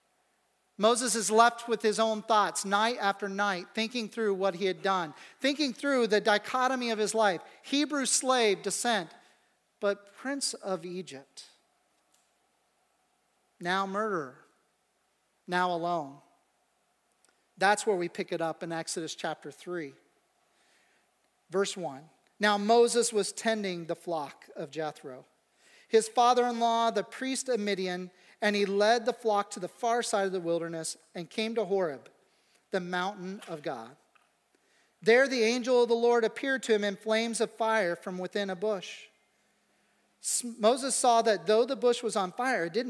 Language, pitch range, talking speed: English, 180-235 Hz, 150 wpm